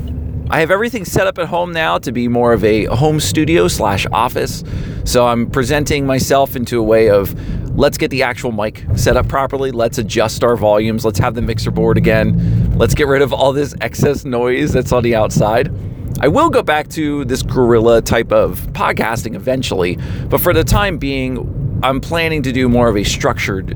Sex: male